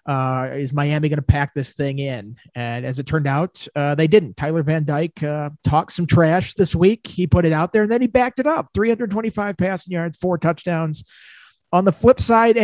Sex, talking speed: male, 220 wpm